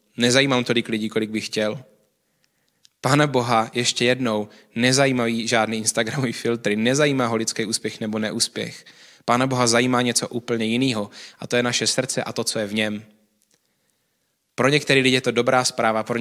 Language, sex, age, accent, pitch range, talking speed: Czech, male, 20-39, native, 110-130 Hz, 165 wpm